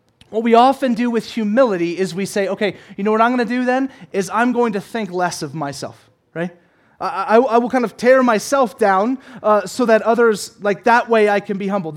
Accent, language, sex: American, English, male